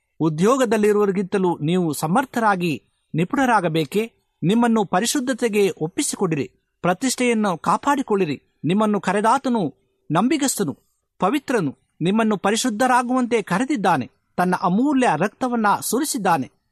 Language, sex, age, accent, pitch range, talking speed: Kannada, male, 50-69, native, 175-235 Hz, 70 wpm